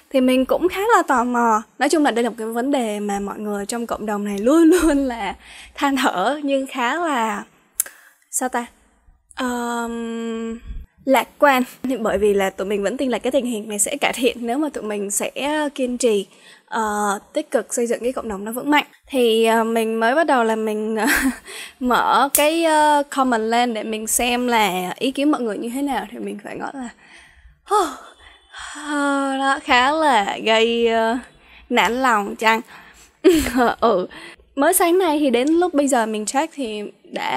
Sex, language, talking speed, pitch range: female, Vietnamese, 190 wpm, 220-275 Hz